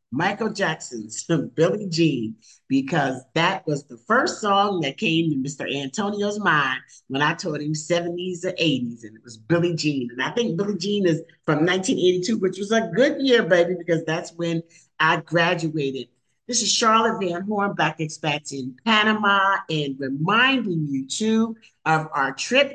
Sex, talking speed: male, 165 wpm